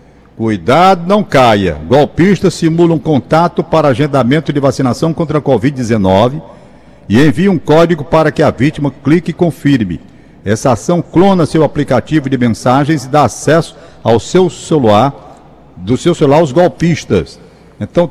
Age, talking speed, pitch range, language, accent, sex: 60-79, 145 wpm, 125-170 Hz, Portuguese, Brazilian, male